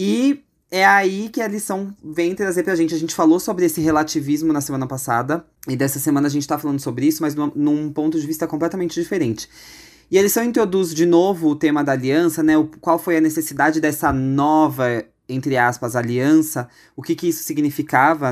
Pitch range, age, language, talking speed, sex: 140-190 Hz, 20-39, Portuguese, 205 wpm, male